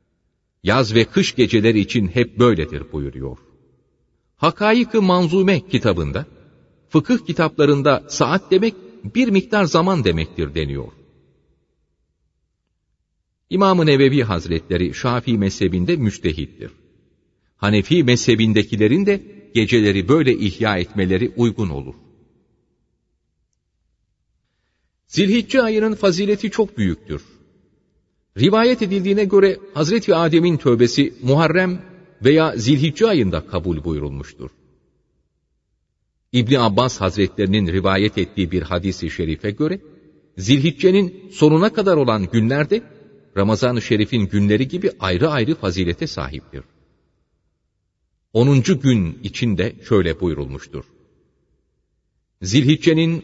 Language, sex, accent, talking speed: Turkish, male, native, 90 wpm